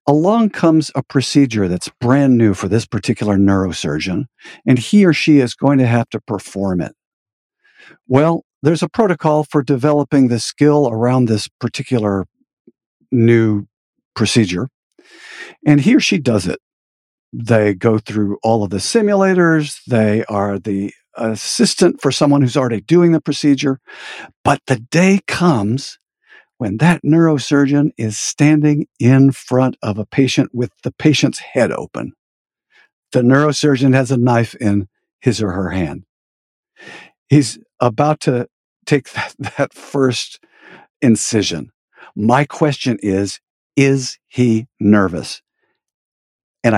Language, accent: English, American